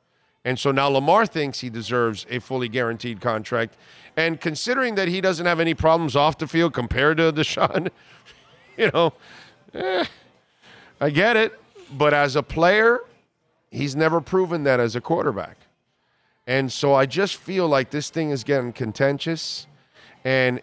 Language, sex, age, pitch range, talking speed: English, male, 40-59, 125-155 Hz, 155 wpm